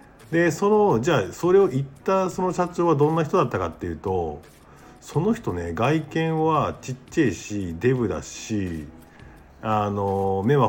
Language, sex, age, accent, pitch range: Japanese, male, 50-69, native, 100-160 Hz